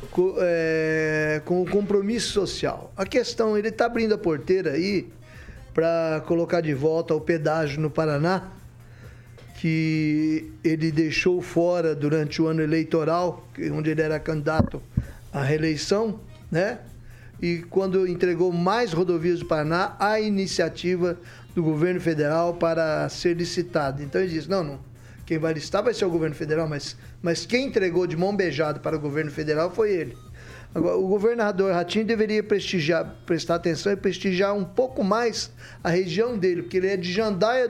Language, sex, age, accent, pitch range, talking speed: Portuguese, male, 20-39, Brazilian, 160-195 Hz, 160 wpm